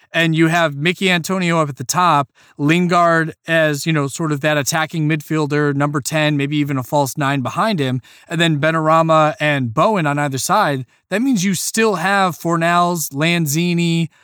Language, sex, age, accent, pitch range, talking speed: English, male, 20-39, American, 140-175 Hz, 175 wpm